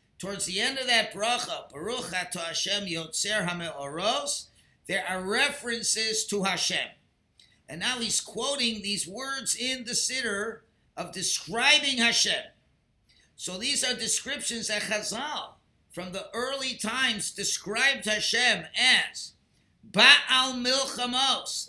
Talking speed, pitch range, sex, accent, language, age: 115 wpm, 200-245 Hz, male, American, English, 50-69